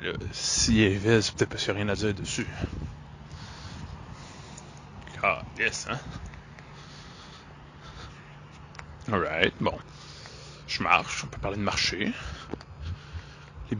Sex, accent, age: male, French, 20-39